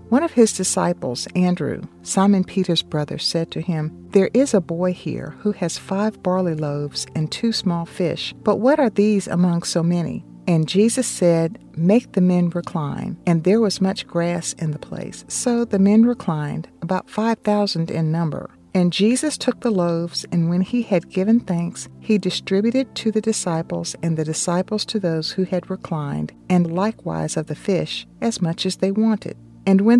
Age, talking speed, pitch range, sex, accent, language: 50-69, 185 wpm, 165-205 Hz, female, American, English